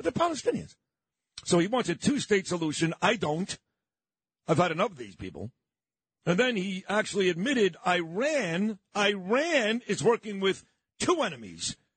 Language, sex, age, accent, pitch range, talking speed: English, male, 50-69, American, 170-215 Hz, 155 wpm